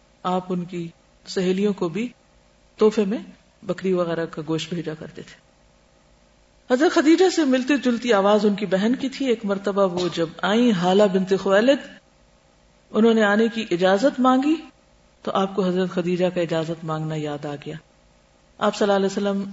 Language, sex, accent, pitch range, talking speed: English, female, Indian, 165-215 Hz, 170 wpm